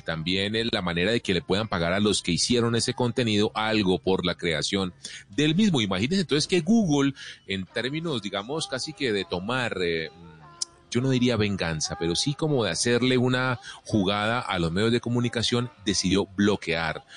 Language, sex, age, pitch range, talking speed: Spanish, male, 30-49, 85-130 Hz, 180 wpm